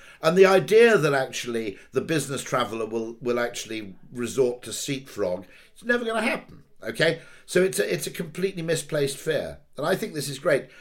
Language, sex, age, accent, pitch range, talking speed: English, male, 50-69, British, 105-155 Hz, 190 wpm